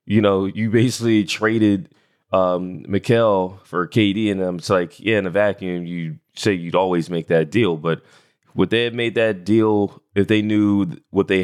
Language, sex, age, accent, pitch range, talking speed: English, male, 20-39, American, 90-110 Hz, 185 wpm